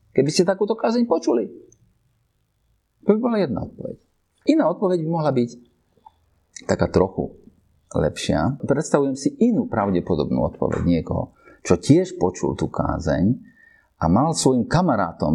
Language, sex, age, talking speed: Slovak, male, 50-69, 130 wpm